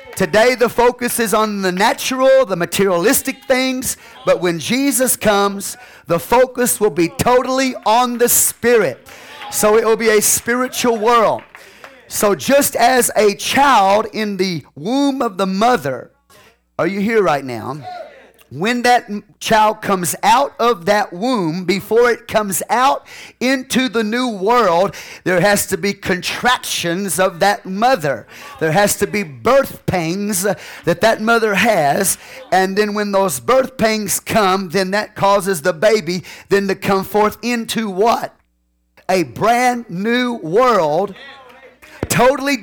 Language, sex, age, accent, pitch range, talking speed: English, male, 40-59, American, 195-245 Hz, 145 wpm